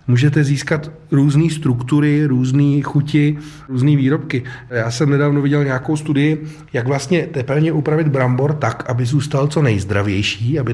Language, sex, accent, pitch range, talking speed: Czech, male, native, 110-140 Hz, 140 wpm